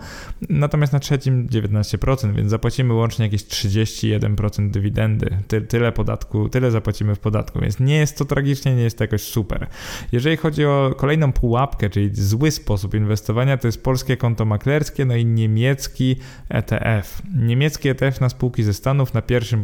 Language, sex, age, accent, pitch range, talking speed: Polish, male, 20-39, native, 105-135 Hz, 155 wpm